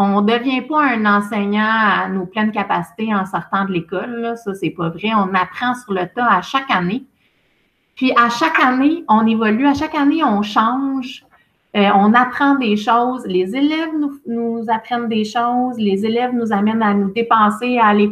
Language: French